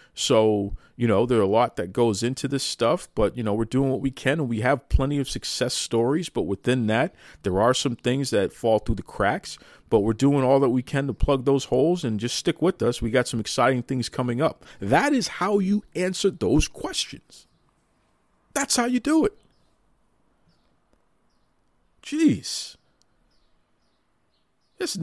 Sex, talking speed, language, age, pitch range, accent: male, 180 wpm, English, 50-69, 110-150 Hz, American